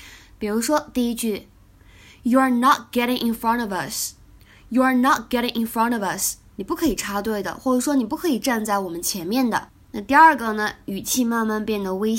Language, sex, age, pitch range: Chinese, female, 20-39, 200-270 Hz